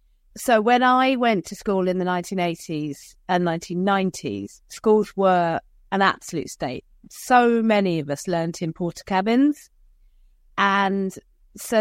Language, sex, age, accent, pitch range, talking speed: English, female, 40-59, British, 175-230 Hz, 130 wpm